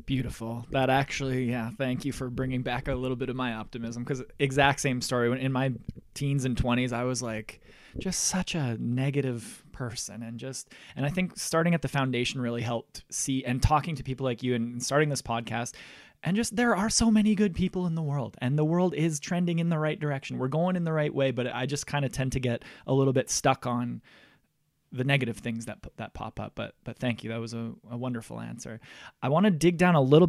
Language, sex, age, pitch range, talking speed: English, male, 20-39, 120-150 Hz, 235 wpm